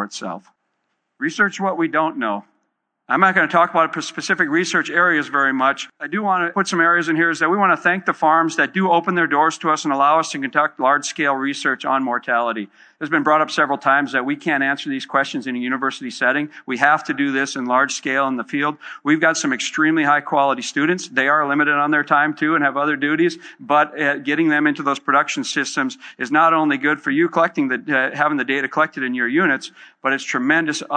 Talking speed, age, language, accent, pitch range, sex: 235 wpm, 50-69, English, American, 135-170 Hz, male